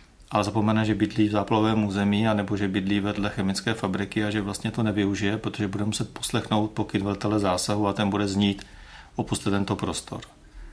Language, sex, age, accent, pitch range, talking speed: Czech, male, 40-59, native, 100-110 Hz, 180 wpm